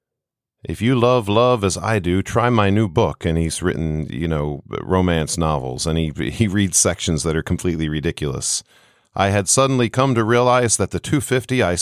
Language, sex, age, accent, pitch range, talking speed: English, male, 40-59, American, 85-110 Hz, 185 wpm